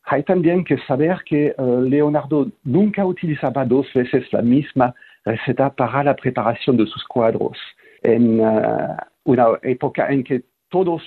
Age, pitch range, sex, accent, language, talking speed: 50-69, 125-150 Hz, male, French, Spanish, 145 wpm